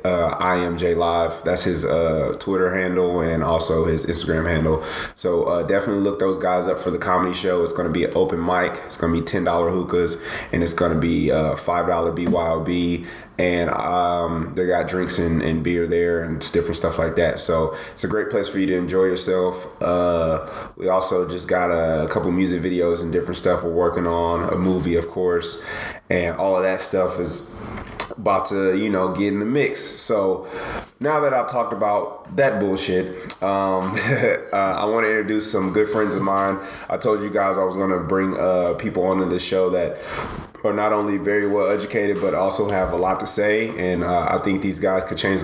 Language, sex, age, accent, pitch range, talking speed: English, male, 20-39, American, 85-100 Hz, 205 wpm